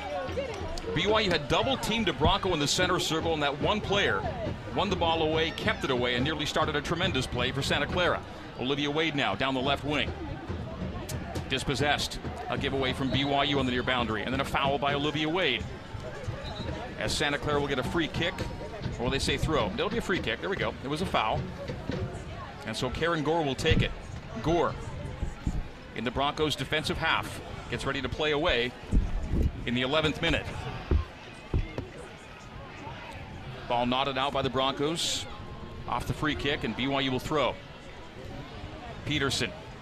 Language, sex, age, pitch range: English, male, 40-59, 125-155 Hz